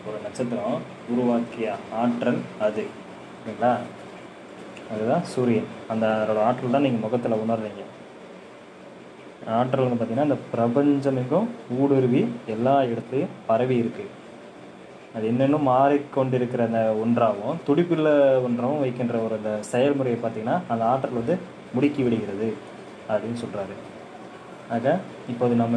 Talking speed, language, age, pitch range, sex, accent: 100 wpm, Tamil, 20-39, 115-130 Hz, male, native